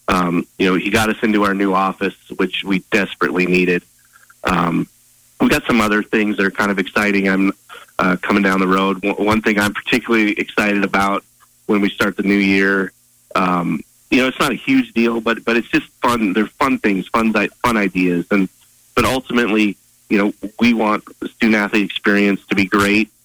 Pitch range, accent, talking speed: 95-105 Hz, American, 200 wpm